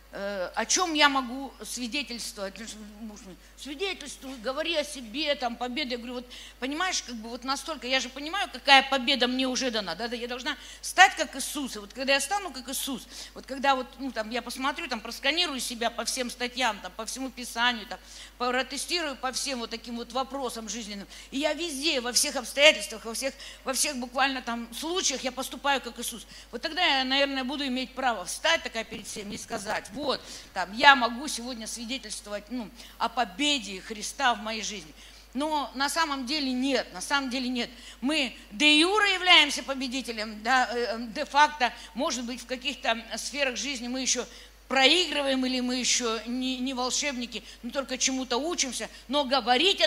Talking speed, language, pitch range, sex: 175 wpm, Russian, 235-280 Hz, female